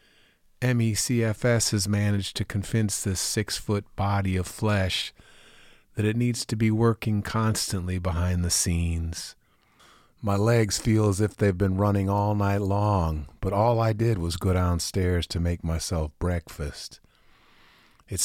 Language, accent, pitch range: English, American, 95-110 Hz